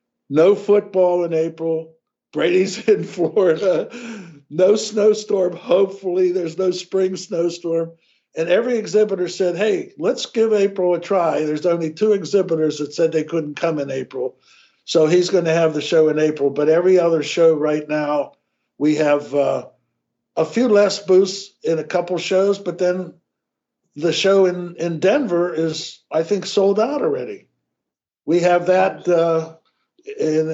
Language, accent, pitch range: English, American, 155-190 Hz